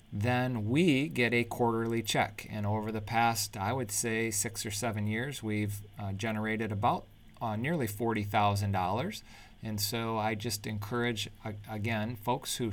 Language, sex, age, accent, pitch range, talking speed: English, male, 40-59, American, 105-115 Hz, 155 wpm